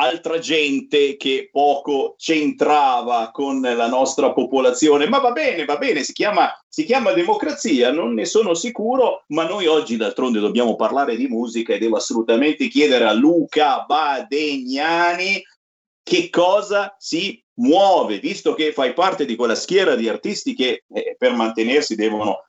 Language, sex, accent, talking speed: Italian, male, native, 145 wpm